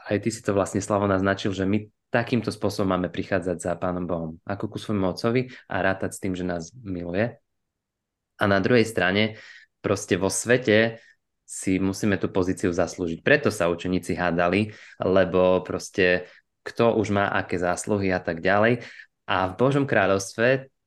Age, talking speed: 20-39, 165 wpm